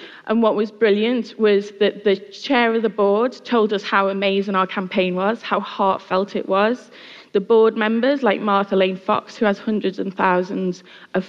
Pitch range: 185-220 Hz